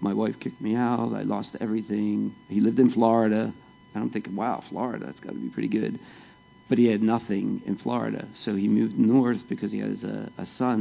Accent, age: American, 40-59